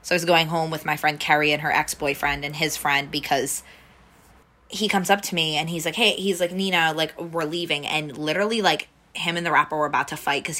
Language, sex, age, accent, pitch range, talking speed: English, female, 20-39, American, 145-170 Hz, 245 wpm